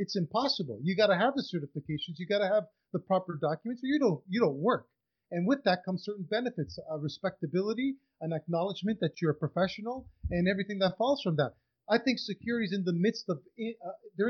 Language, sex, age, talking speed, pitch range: English, male, 30-49, 210 wpm, 160-210 Hz